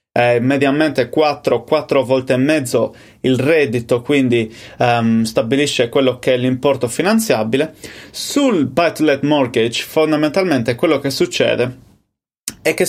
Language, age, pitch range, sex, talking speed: Italian, 20-39, 125-155 Hz, male, 115 wpm